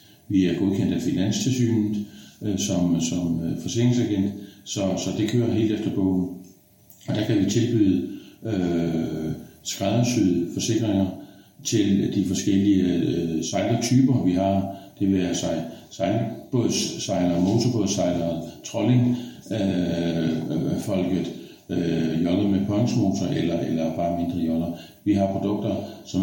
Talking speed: 120 wpm